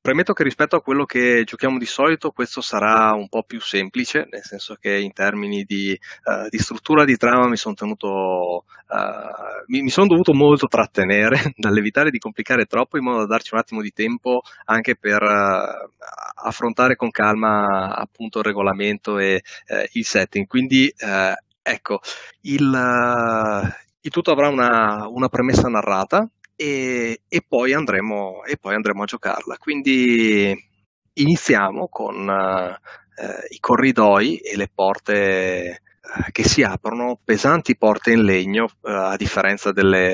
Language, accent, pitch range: Italian, native, 100-125 Hz